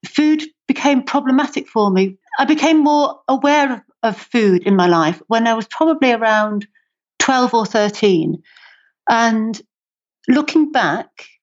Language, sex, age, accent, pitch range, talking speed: English, female, 40-59, British, 205-265 Hz, 135 wpm